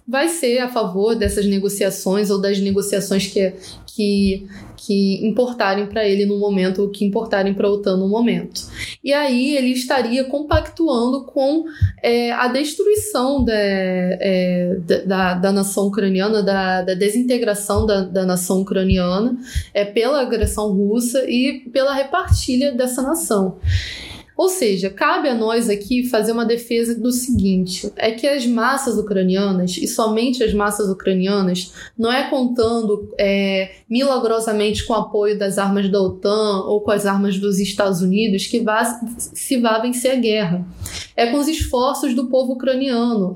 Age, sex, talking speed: 10-29, female, 150 wpm